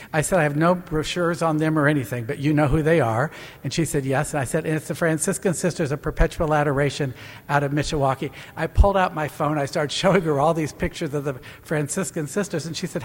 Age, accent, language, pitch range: 60-79, American, English, 125-160 Hz